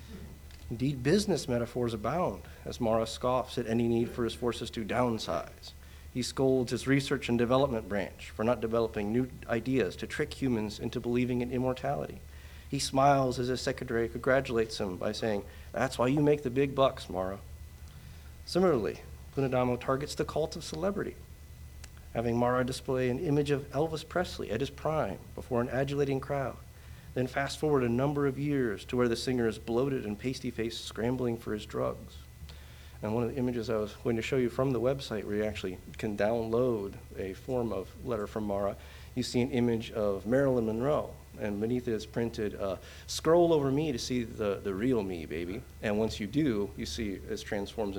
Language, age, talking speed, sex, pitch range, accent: English, 40-59, 185 wpm, male, 95-125 Hz, American